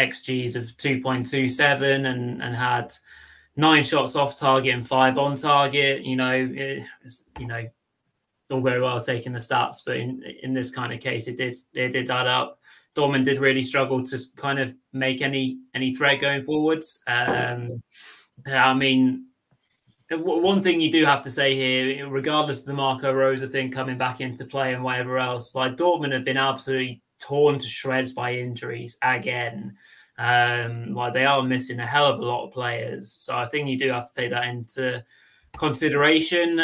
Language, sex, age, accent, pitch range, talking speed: English, male, 20-39, British, 125-135 Hz, 180 wpm